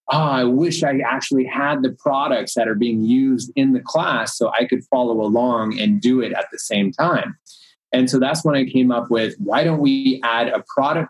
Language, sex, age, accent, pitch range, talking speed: English, male, 30-49, American, 115-135 Hz, 220 wpm